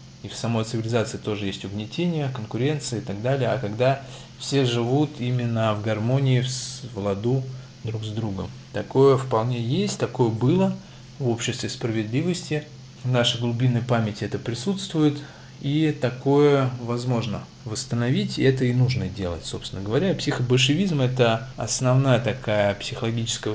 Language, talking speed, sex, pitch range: Russian, 140 wpm, male, 105-130 Hz